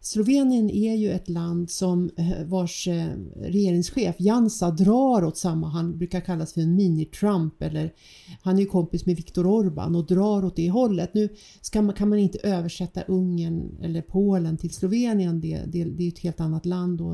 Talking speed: 185 wpm